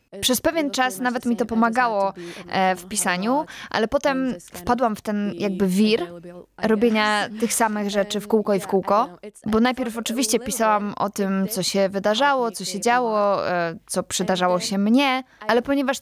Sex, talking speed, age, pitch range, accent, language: female, 160 wpm, 20-39, 200-240 Hz, native, Polish